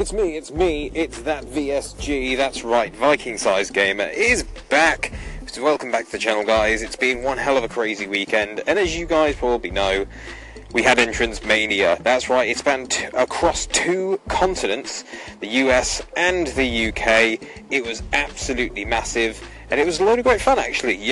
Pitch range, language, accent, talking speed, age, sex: 110-145 Hz, English, British, 185 wpm, 30-49, male